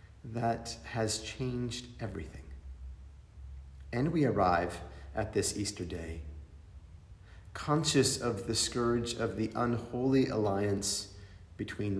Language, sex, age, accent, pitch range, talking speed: English, male, 40-59, American, 90-115 Hz, 100 wpm